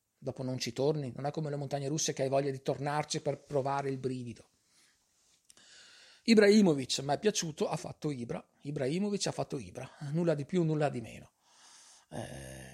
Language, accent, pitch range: Italian, native, 120-145 Hz